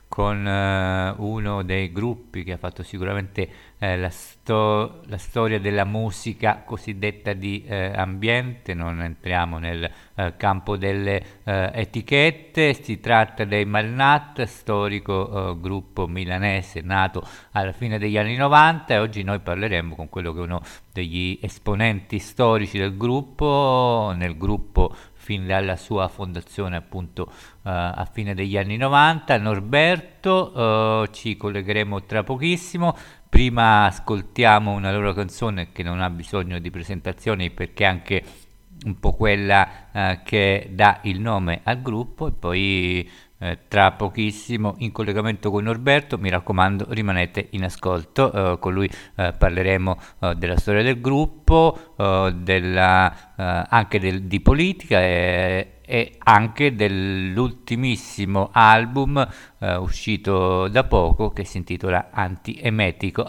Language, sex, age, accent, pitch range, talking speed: Italian, male, 50-69, native, 95-110 Hz, 130 wpm